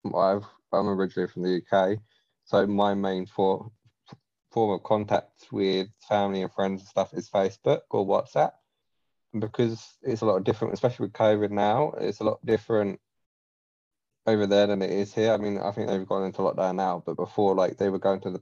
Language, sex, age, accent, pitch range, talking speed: English, male, 20-39, British, 95-105 Hz, 200 wpm